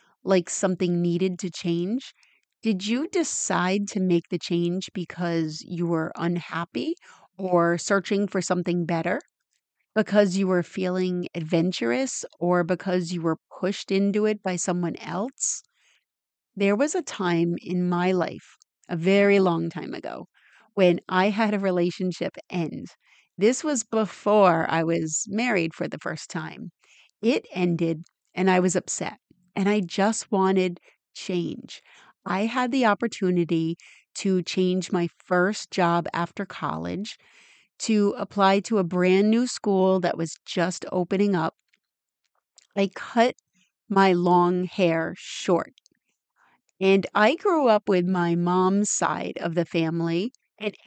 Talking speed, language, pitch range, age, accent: 135 wpm, English, 175-205 Hz, 30-49, American